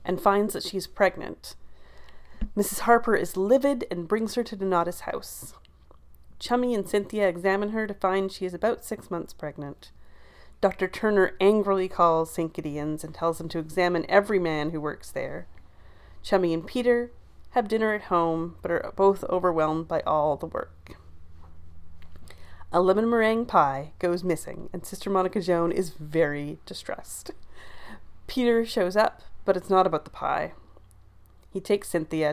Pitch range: 150-200 Hz